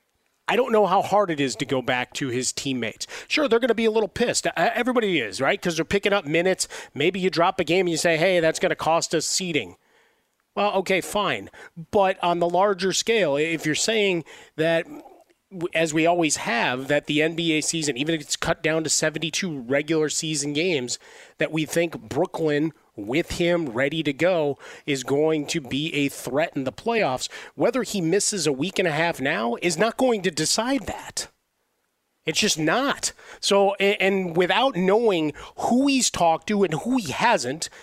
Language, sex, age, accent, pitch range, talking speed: English, male, 30-49, American, 155-210 Hz, 195 wpm